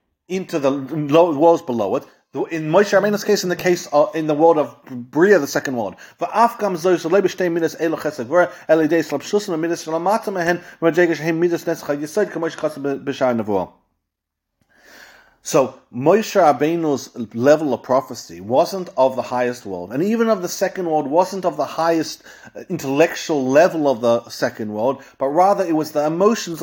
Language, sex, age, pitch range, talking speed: English, male, 40-59, 140-180 Hz, 120 wpm